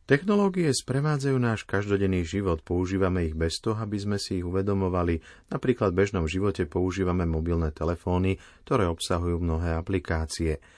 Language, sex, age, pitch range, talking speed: Slovak, male, 30-49, 85-105 Hz, 140 wpm